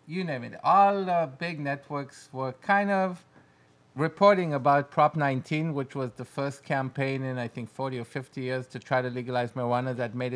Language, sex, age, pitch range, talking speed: English, male, 50-69, 130-160 Hz, 190 wpm